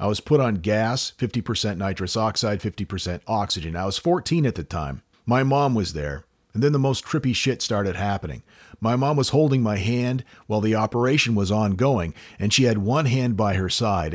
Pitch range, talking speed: 100-130 Hz, 200 wpm